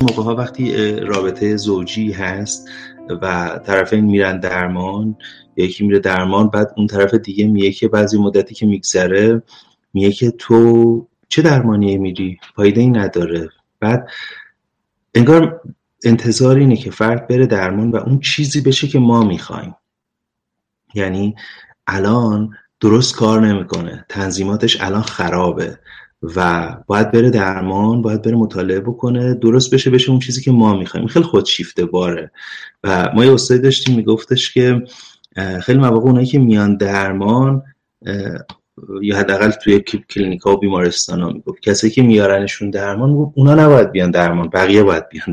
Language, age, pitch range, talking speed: Persian, 30-49, 100-125 Hz, 140 wpm